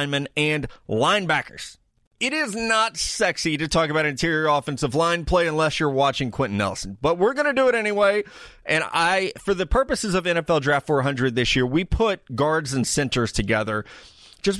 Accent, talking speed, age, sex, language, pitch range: American, 175 wpm, 30-49, male, English, 125-170 Hz